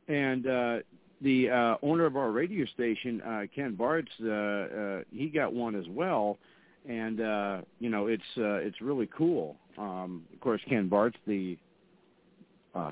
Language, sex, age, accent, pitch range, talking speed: English, male, 50-69, American, 100-135 Hz, 165 wpm